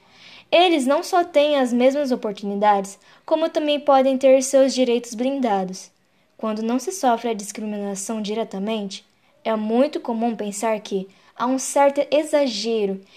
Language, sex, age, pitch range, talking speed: Portuguese, female, 10-29, 220-270 Hz, 135 wpm